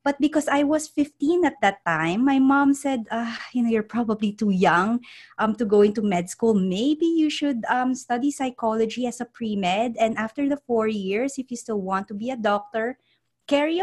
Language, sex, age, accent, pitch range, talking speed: English, female, 20-39, Filipino, 215-275 Hz, 200 wpm